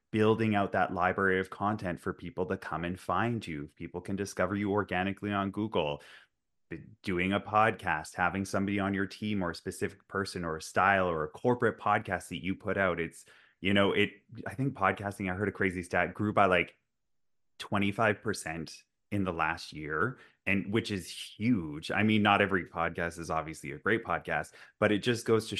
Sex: male